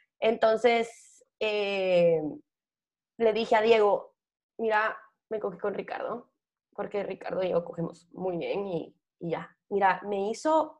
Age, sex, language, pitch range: 20-39, female, Spanish, 220-290 Hz